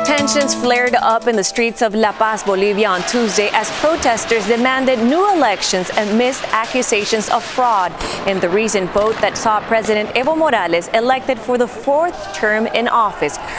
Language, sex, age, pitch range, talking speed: English, female, 30-49, 205-250 Hz, 170 wpm